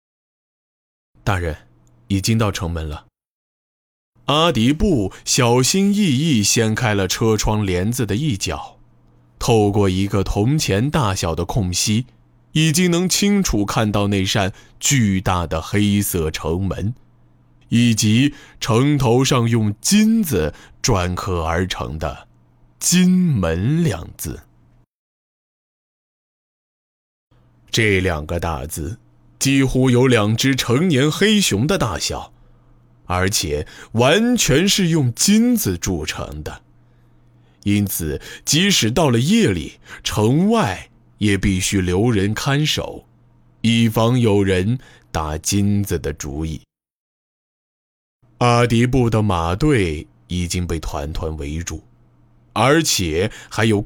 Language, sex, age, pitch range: Chinese, male, 20-39, 85-125 Hz